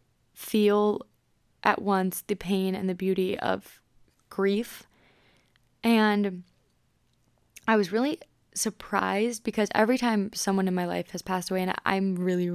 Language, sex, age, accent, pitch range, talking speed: English, female, 20-39, American, 185-210 Hz, 135 wpm